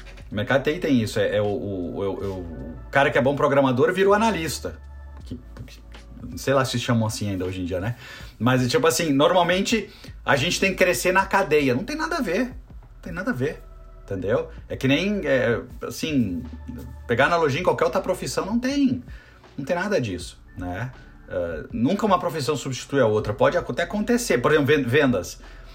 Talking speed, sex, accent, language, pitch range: 195 wpm, male, Brazilian, Portuguese, 120-185 Hz